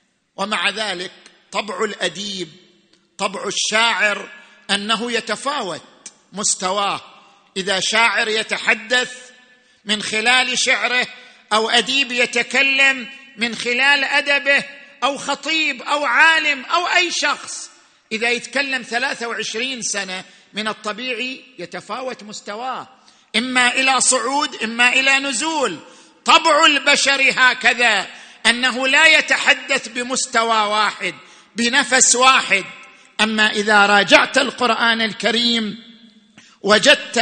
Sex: male